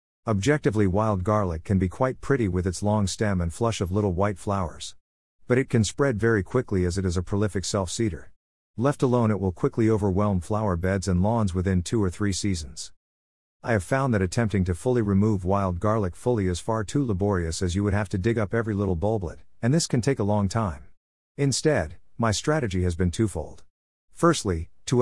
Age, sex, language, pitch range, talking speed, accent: 50-69, male, English, 90-115 Hz, 200 wpm, American